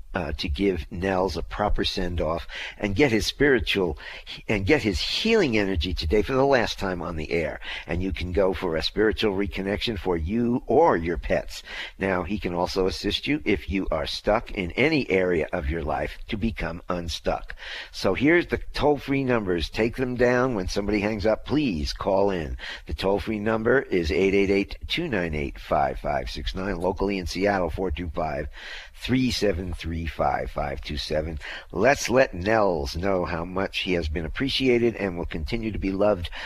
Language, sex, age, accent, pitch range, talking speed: English, male, 50-69, American, 85-105 Hz, 165 wpm